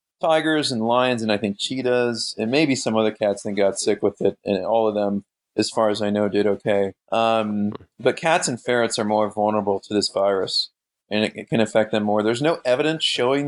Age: 30-49